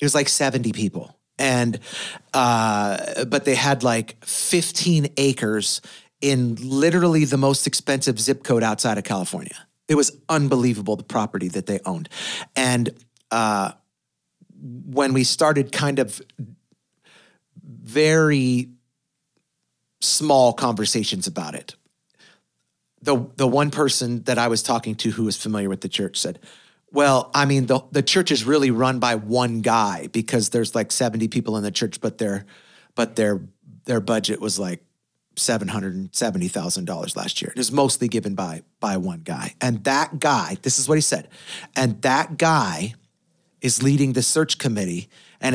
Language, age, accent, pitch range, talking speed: English, 40-59, American, 115-145 Hz, 150 wpm